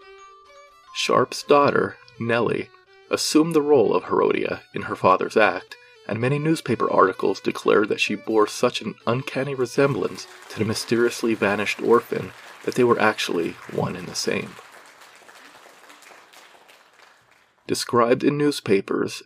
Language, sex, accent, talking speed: English, male, American, 125 wpm